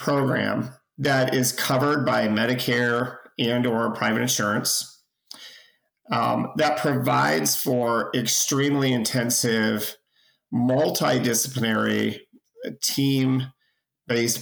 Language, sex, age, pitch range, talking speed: English, male, 40-59, 115-130 Hz, 75 wpm